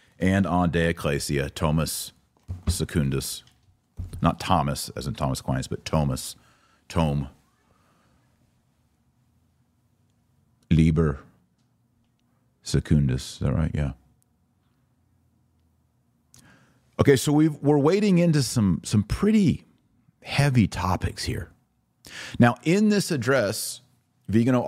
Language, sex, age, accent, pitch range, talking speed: English, male, 40-59, American, 80-120 Hz, 90 wpm